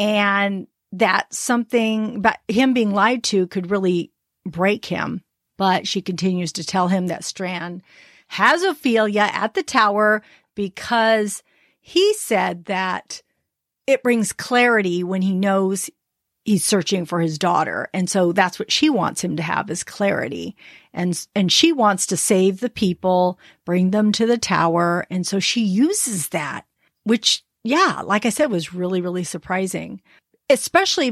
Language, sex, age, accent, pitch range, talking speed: English, female, 40-59, American, 185-245 Hz, 150 wpm